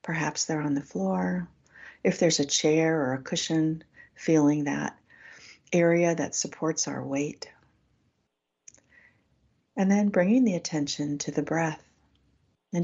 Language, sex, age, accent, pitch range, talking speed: English, female, 40-59, American, 135-170 Hz, 130 wpm